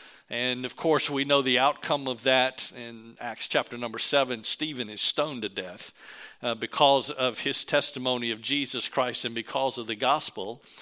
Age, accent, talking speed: 50-69, American, 175 wpm